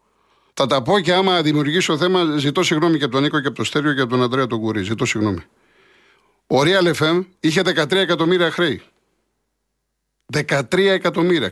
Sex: male